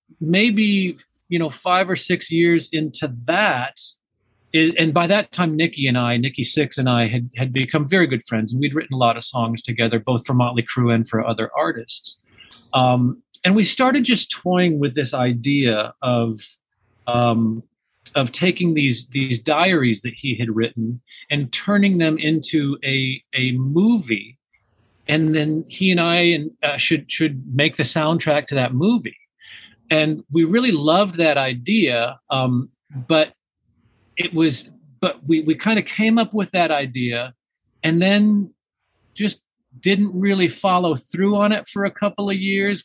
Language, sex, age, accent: English, male, 40-59, American